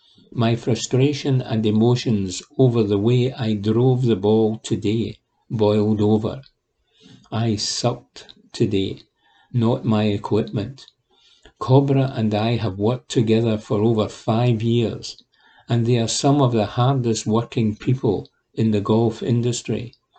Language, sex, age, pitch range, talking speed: English, male, 60-79, 105-125 Hz, 130 wpm